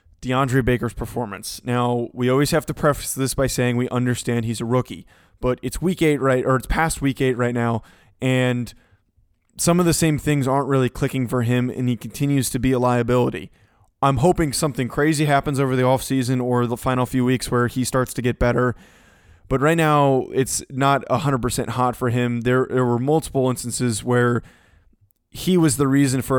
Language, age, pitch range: English, 20-39, 120-135 Hz